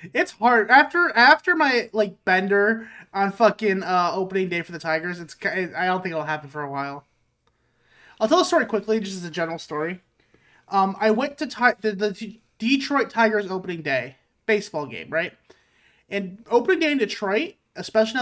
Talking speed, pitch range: 180 wpm, 170-235 Hz